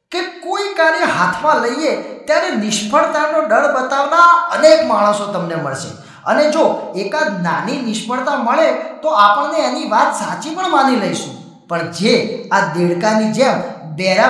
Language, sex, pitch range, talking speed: Gujarati, male, 170-285 Hz, 70 wpm